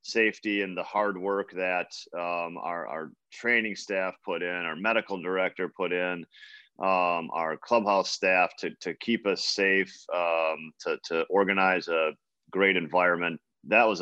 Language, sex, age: English, male, 40-59